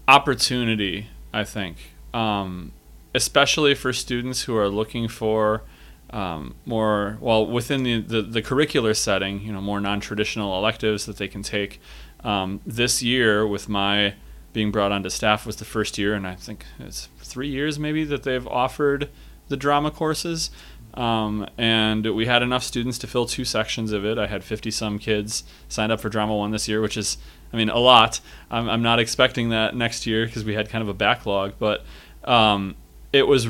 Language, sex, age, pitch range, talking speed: English, male, 30-49, 105-125 Hz, 185 wpm